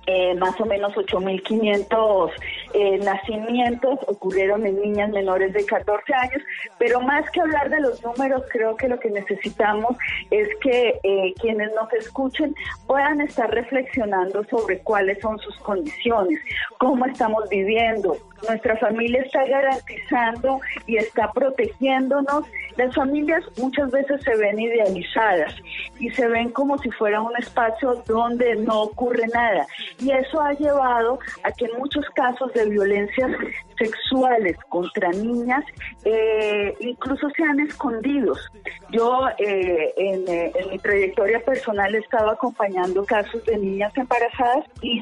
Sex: female